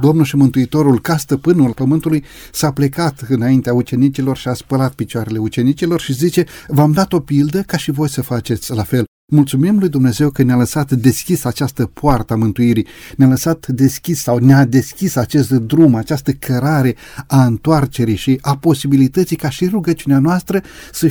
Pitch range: 130-175 Hz